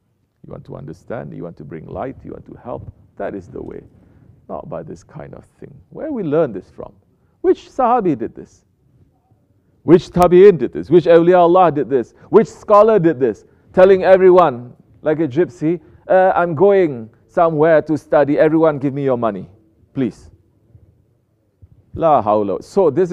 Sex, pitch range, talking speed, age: male, 110-175 Hz, 165 wpm, 40-59